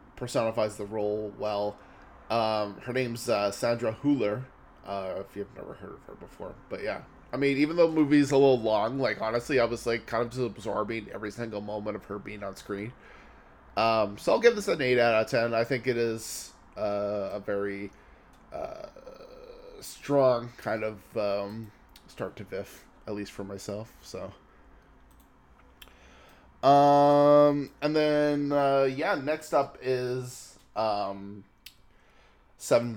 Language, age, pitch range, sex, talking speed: English, 20-39, 105-135 Hz, male, 155 wpm